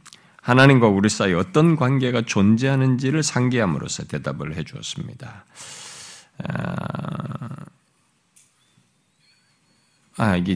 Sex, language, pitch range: male, Korean, 90-135 Hz